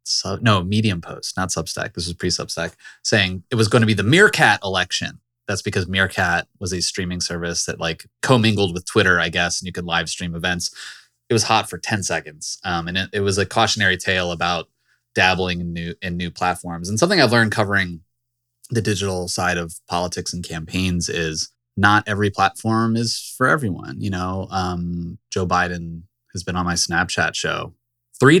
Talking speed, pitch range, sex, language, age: 185 wpm, 85-110 Hz, male, English, 20-39